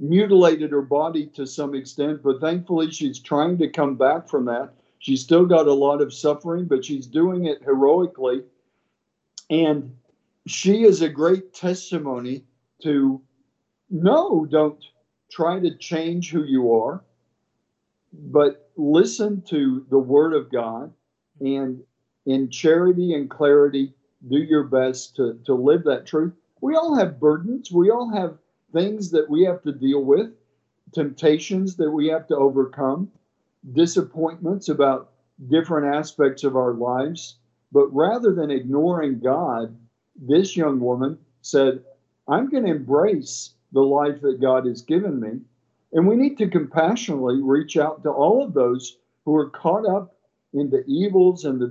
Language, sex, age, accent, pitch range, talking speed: English, male, 50-69, American, 135-175 Hz, 150 wpm